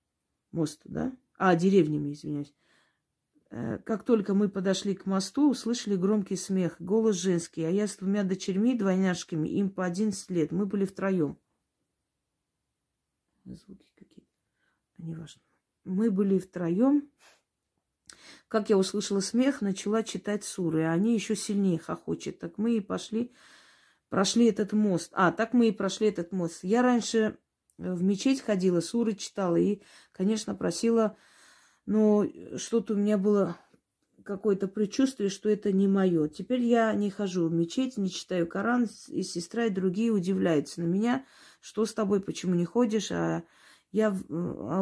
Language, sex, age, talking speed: Russian, female, 40-59, 140 wpm